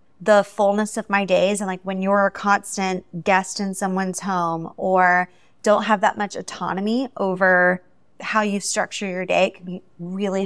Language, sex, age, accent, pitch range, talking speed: English, female, 20-39, American, 185-225 Hz, 180 wpm